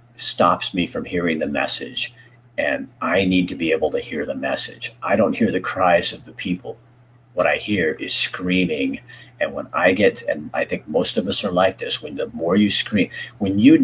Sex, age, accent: male, 50-69, American